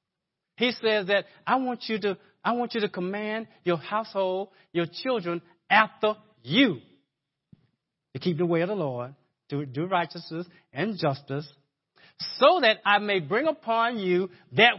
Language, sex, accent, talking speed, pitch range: English, male, American, 155 wpm, 160-220 Hz